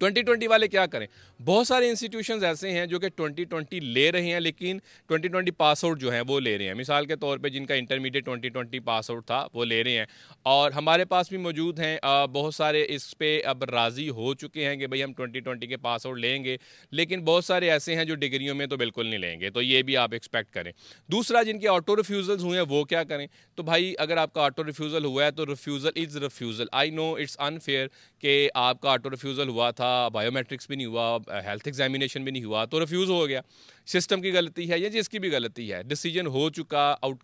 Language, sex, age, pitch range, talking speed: Urdu, male, 30-49, 130-165 Hz, 235 wpm